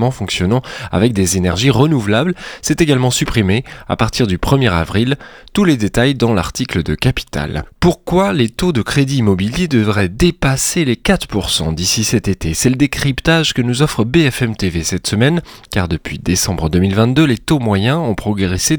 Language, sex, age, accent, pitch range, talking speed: French, male, 20-39, French, 95-135 Hz, 165 wpm